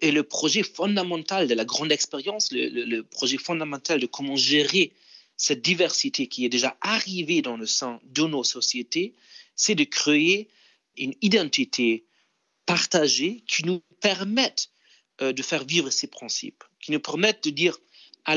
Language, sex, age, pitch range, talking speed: French, male, 40-59, 135-200 Hz, 155 wpm